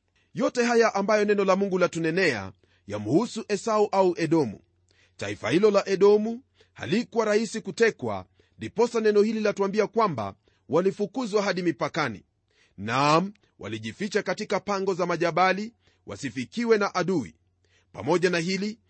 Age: 40-59